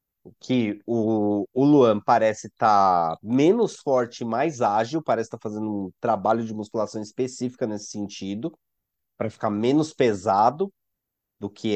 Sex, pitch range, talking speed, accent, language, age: male, 115-150 Hz, 150 wpm, Brazilian, Portuguese, 30-49